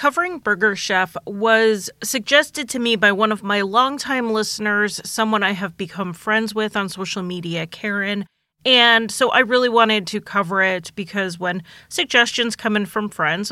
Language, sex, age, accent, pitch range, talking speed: English, female, 30-49, American, 185-230 Hz, 170 wpm